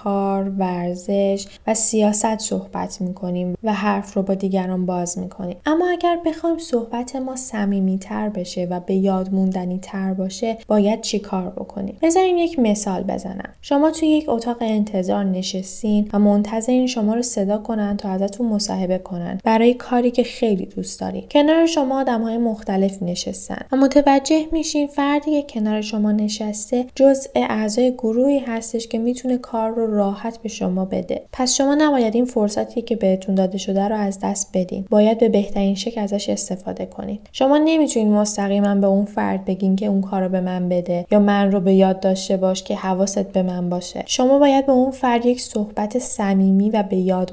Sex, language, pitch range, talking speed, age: female, Persian, 190-235 Hz, 175 wpm, 10-29